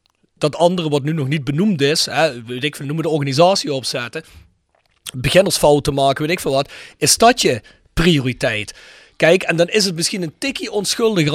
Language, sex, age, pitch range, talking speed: Dutch, male, 40-59, 140-185 Hz, 180 wpm